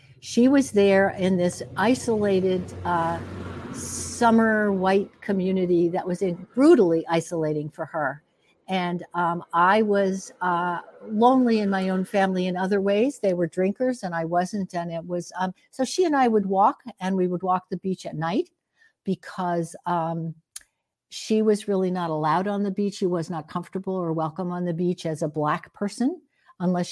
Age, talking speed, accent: 60-79, 170 wpm, American